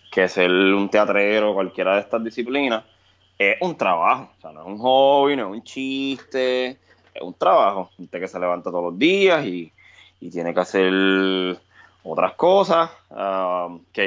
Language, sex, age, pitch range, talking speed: Spanish, male, 20-39, 90-115 Hz, 165 wpm